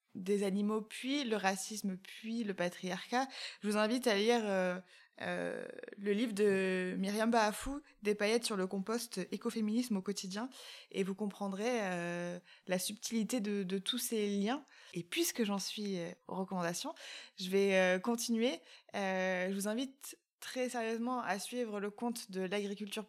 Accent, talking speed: French, 160 wpm